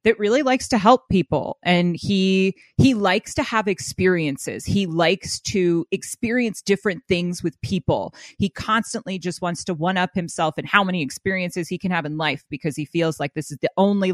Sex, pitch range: female, 170-215 Hz